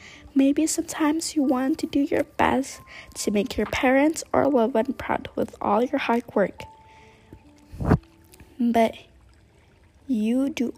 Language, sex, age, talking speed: English, female, 10-29, 135 wpm